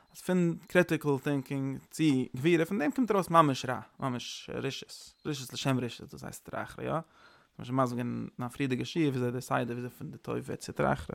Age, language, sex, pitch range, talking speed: 20-39, English, male, 125-170 Hz, 155 wpm